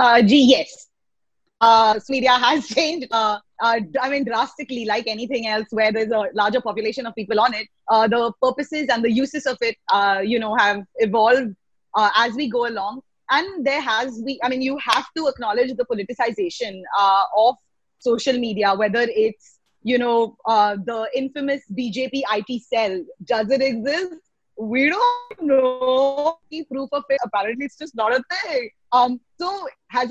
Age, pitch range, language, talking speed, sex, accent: 20-39, 220-275 Hz, English, 175 wpm, female, Indian